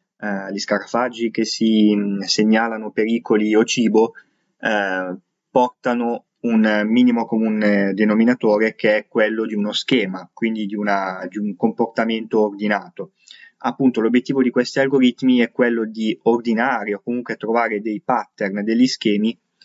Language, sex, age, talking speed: Italian, male, 20-39, 130 wpm